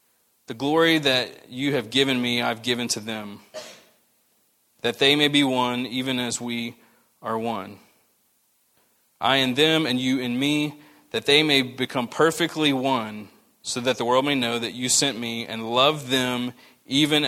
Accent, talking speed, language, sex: American, 165 wpm, English, male